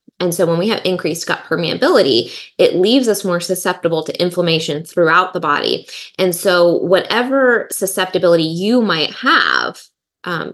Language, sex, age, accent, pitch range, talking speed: English, female, 20-39, American, 165-195 Hz, 150 wpm